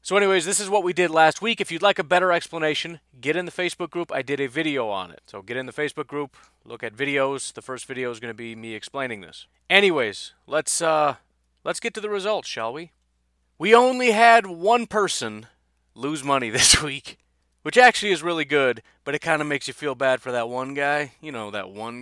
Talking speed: 230 wpm